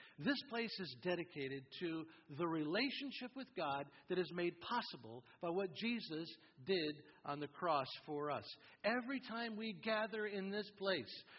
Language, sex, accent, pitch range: English, male, American, 160-225 Hz